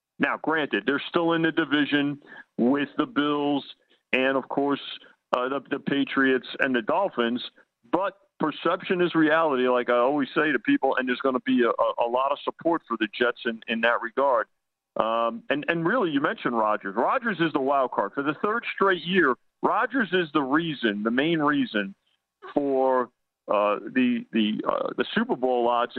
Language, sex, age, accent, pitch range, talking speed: English, male, 50-69, American, 125-170 Hz, 185 wpm